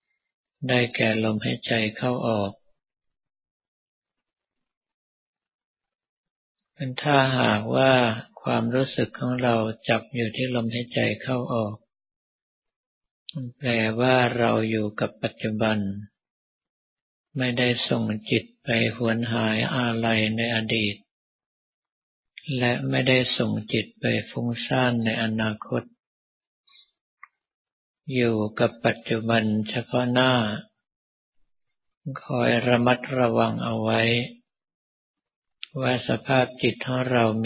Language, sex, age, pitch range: Thai, male, 50-69, 110-125 Hz